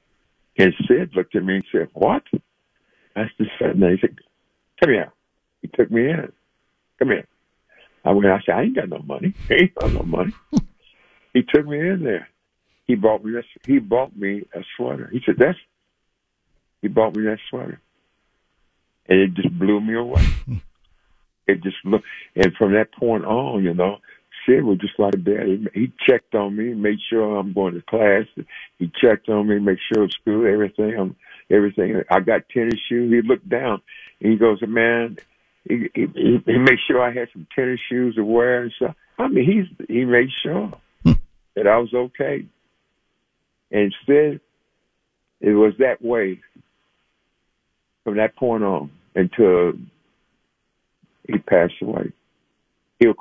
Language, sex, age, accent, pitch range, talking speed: English, male, 60-79, American, 100-120 Hz, 165 wpm